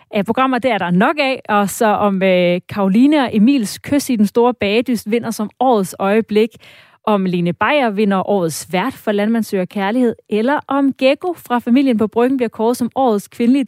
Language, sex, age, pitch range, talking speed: Danish, female, 30-49, 195-245 Hz, 185 wpm